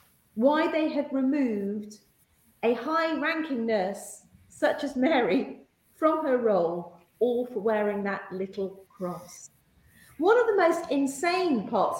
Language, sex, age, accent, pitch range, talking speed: English, female, 40-59, British, 225-315 Hz, 130 wpm